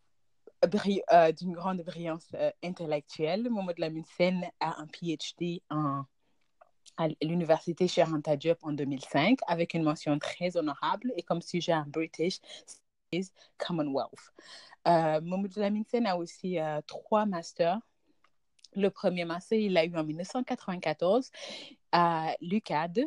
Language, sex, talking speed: English, female, 120 wpm